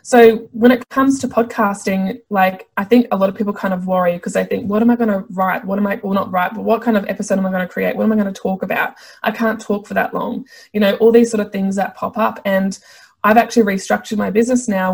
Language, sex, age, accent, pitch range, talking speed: English, female, 20-39, Australian, 195-230 Hz, 285 wpm